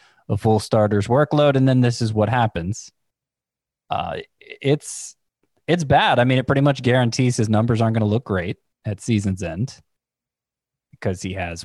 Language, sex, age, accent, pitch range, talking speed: English, male, 20-39, American, 100-125 Hz, 170 wpm